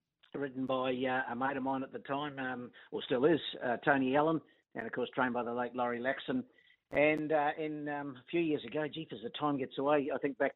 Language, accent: English, Australian